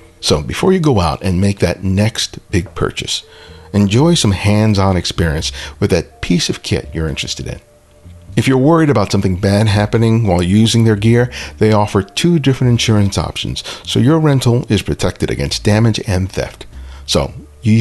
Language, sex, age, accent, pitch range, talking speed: English, male, 50-69, American, 85-120 Hz, 170 wpm